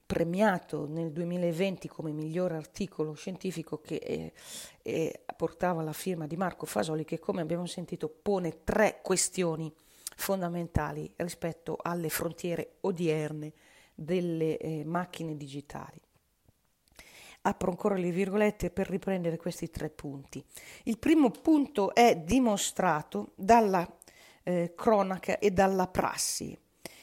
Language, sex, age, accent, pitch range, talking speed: Italian, female, 40-59, native, 165-210 Hz, 115 wpm